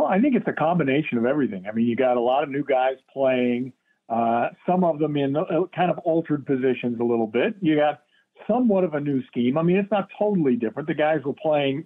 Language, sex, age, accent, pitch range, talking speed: English, male, 50-69, American, 125-170 Hz, 240 wpm